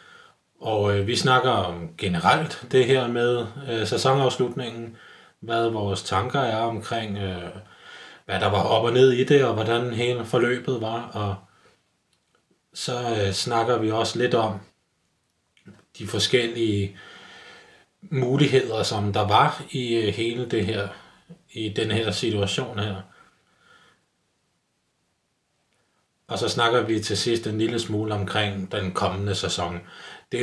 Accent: native